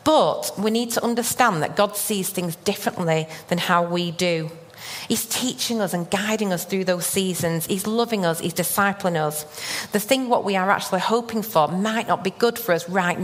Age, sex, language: 40-59, female, English